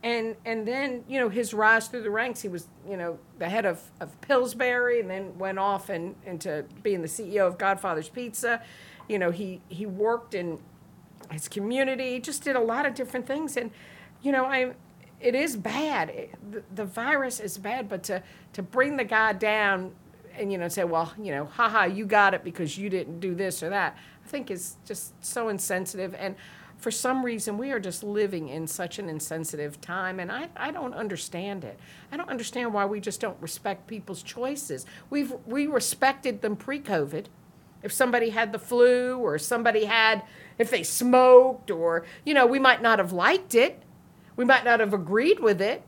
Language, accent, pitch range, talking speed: English, American, 190-255 Hz, 200 wpm